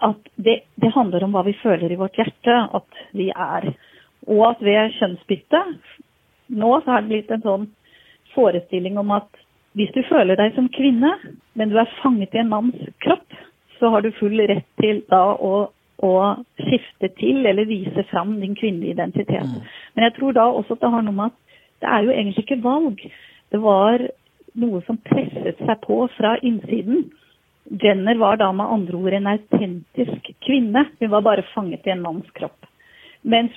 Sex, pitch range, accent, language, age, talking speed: female, 195-230 Hz, Swedish, English, 40-59, 180 wpm